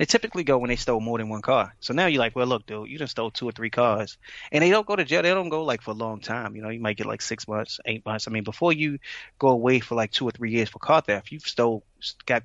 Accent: American